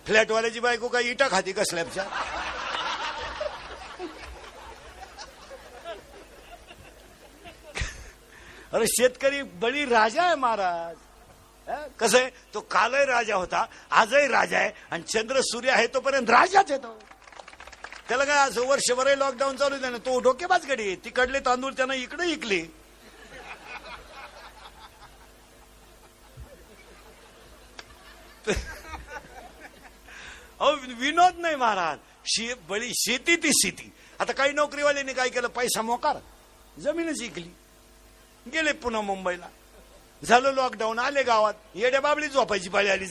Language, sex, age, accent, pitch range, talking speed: Marathi, male, 60-79, native, 215-275 Hz, 90 wpm